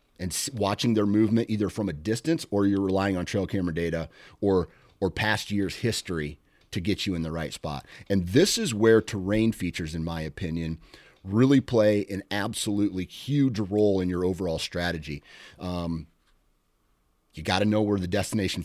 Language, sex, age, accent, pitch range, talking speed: English, male, 30-49, American, 85-110 Hz, 175 wpm